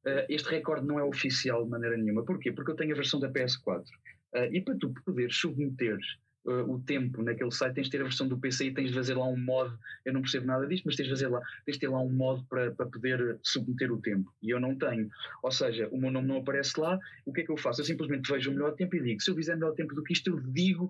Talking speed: 290 wpm